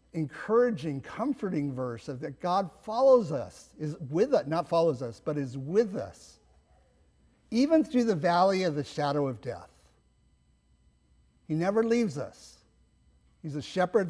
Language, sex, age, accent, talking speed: English, male, 50-69, American, 145 wpm